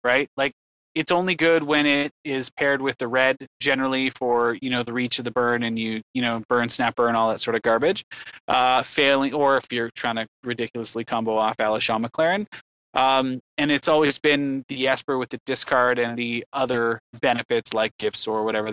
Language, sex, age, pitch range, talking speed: English, male, 20-39, 115-135 Hz, 200 wpm